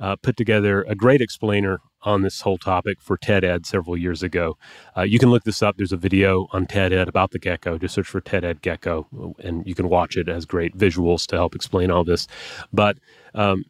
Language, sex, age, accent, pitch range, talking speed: English, male, 30-49, American, 95-120 Hz, 220 wpm